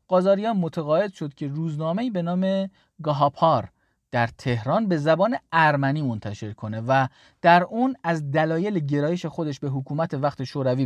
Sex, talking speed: male, 145 wpm